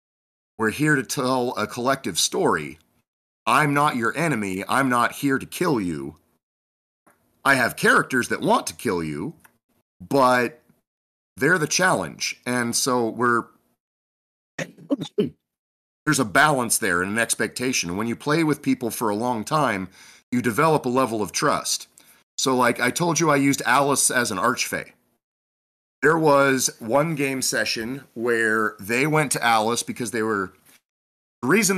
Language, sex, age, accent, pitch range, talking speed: English, male, 40-59, American, 110-140 Hz, 150 wpm